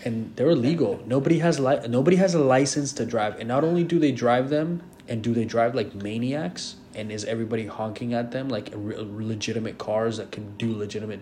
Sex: male